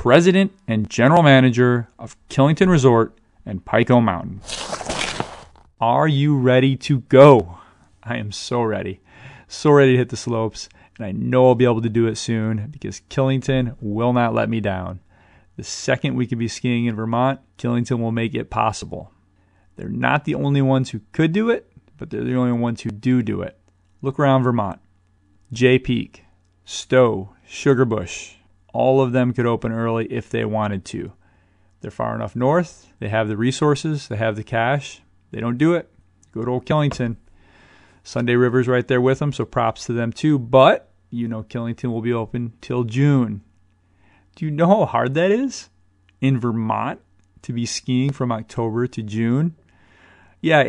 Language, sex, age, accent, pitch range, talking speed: English, male, 30-49, American, 105-130 Hz, 175 wpm